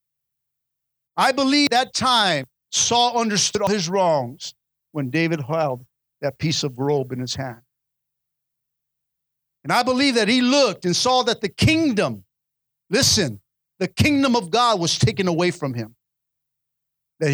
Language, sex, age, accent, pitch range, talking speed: English, male, 50-69, American, 145-240 Hz, 140 wpm